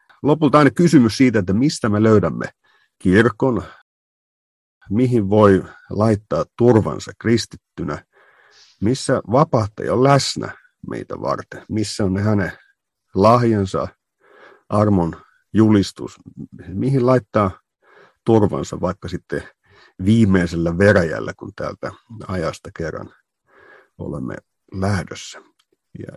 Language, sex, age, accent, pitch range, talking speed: Finnish, male, 50-69, native, 95-125 Hz, 90 wpm